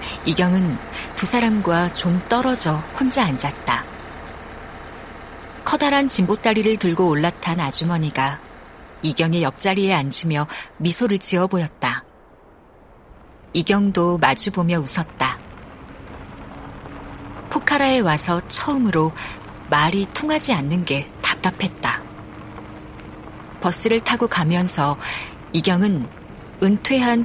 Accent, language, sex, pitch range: native, Korean, female, 155-220 Hz